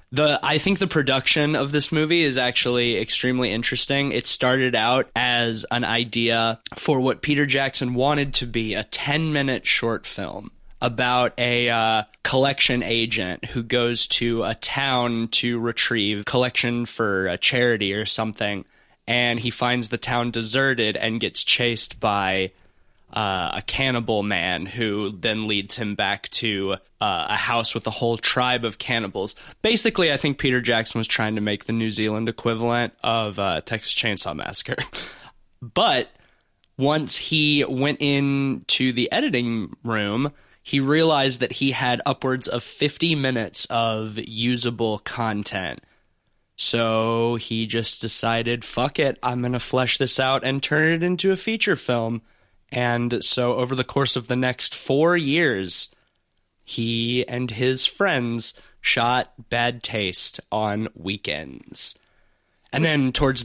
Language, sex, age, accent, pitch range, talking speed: English, male, 20-39, American, 110-130 Hz, 145 wpm